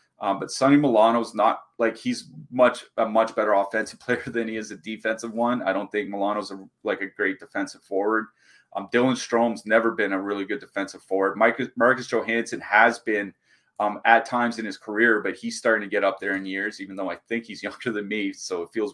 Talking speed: 215 wpm